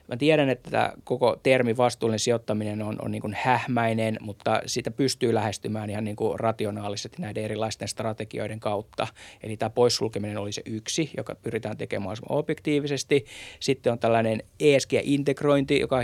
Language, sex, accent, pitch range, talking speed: Finnish, male, native, 110-130 Hz, 145 wpm